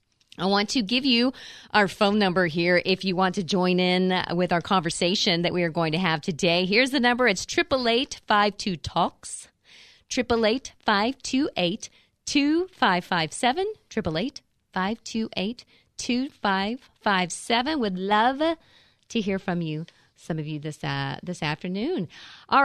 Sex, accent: female, American